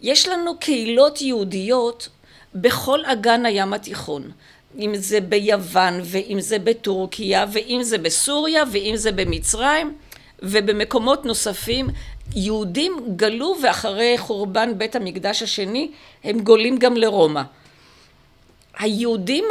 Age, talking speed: 50-69, 105 wpm